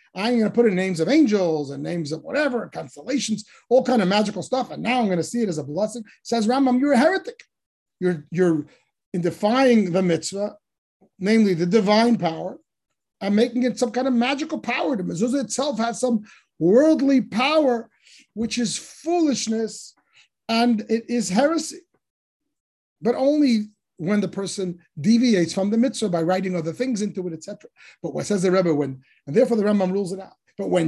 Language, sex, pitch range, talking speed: English, male, 185-250 Hz, 190 wpm